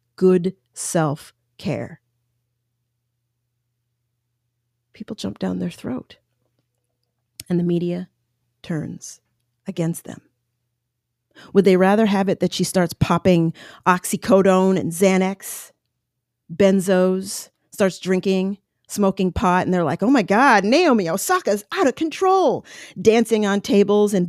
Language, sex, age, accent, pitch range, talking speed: English, female, 40-59, American, 145-215 Hz, 110 wpm